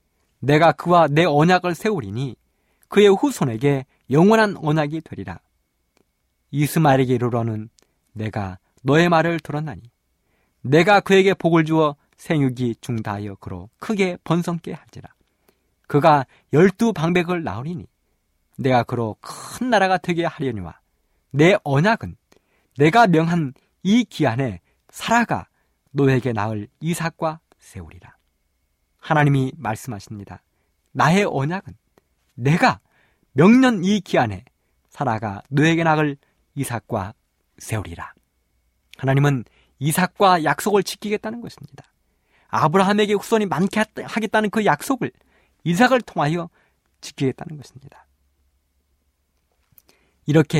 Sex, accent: male, native